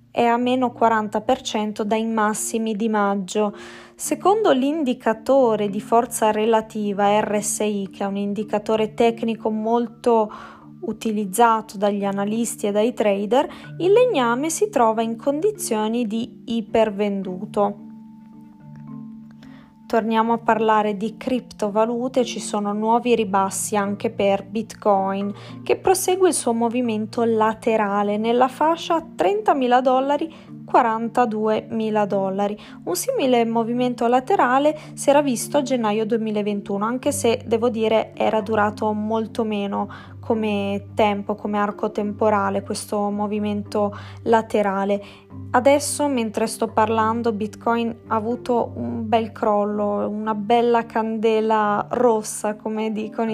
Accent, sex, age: native, female, 20-39